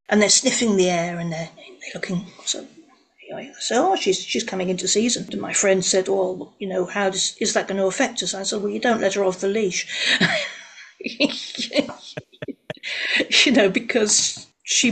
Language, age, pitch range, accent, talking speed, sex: English, 40-59, 185-215 Hz, British, 175 wpm, female